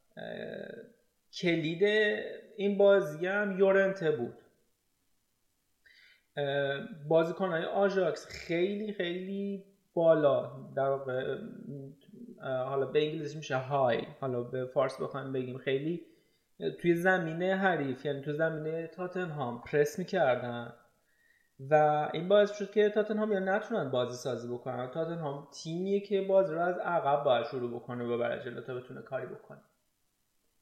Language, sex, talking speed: Persian, male, 130 wpm